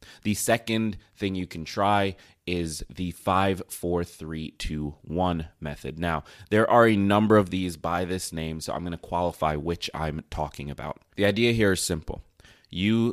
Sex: male